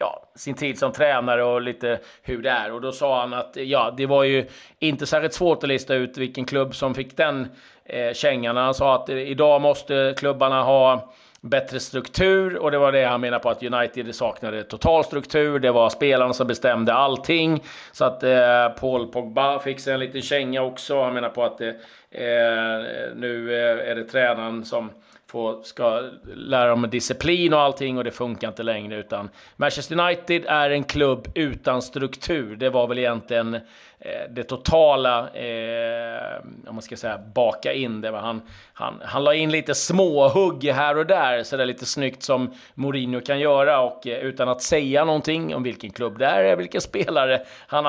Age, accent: 30-49, native